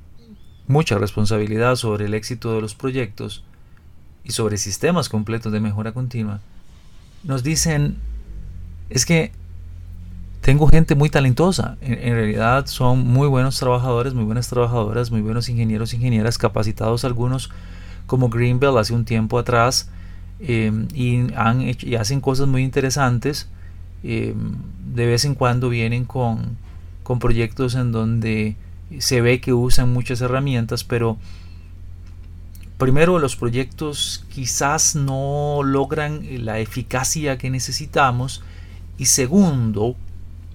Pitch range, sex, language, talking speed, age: 90-130 Hz, male, Spanish, 125 wpm, 30-49